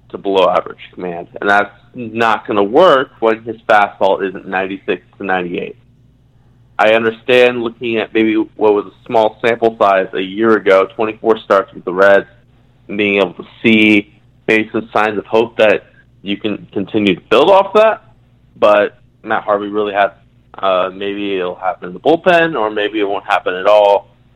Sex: male